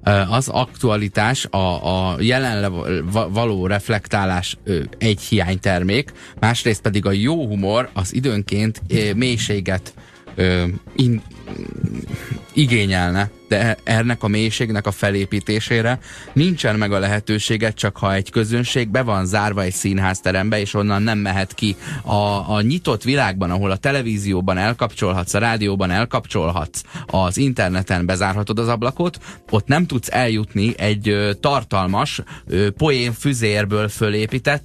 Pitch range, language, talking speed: 95-120 Hz, Hungarian, 115 wpm